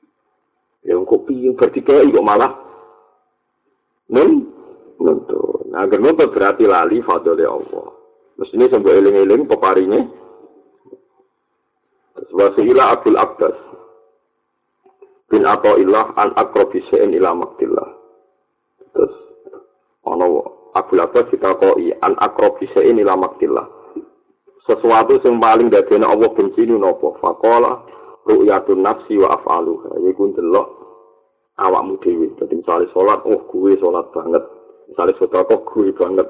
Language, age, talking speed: Indonesian, 50-69, 120 wpm